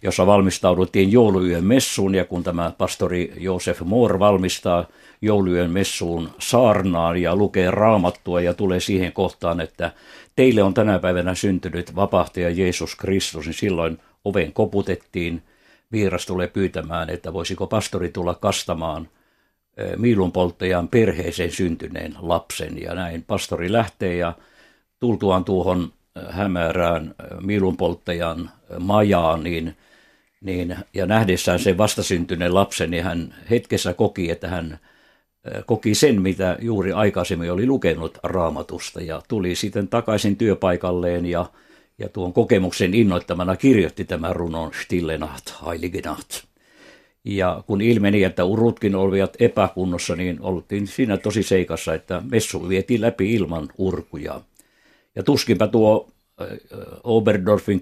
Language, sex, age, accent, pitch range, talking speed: Finnish, male, 60-79, native, 90-105 Hz, 120 wpm